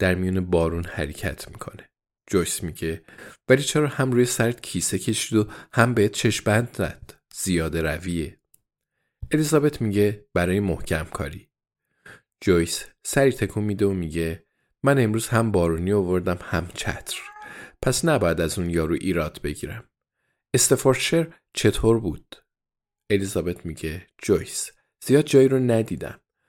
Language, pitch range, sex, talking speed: Persian, 90-115 Hz, male, 125 wpm